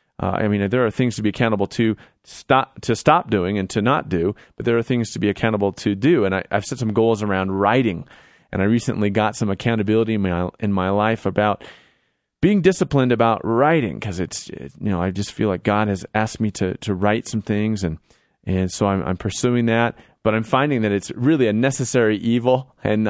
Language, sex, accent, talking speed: English, male, American, 225 wpm